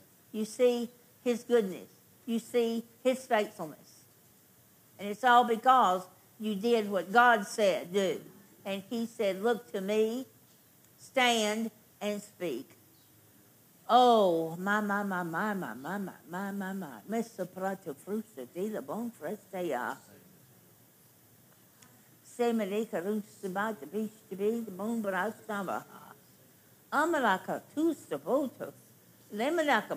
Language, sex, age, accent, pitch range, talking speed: English, female, 60-79, American, 180-230 Hz, 100 wpm